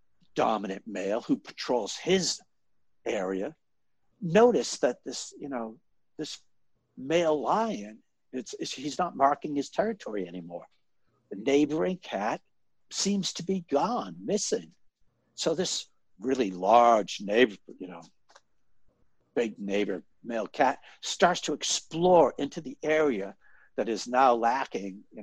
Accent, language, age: American, English, 60-79